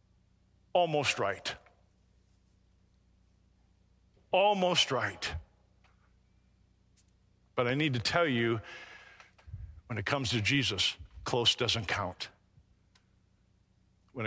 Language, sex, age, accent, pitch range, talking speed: English, male, 50-69, American, 95-125 Hz, 80 wpm